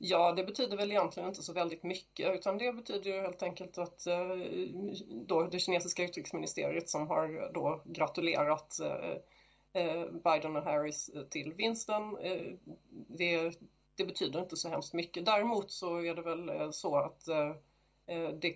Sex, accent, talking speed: female, Swedish, 140 wpm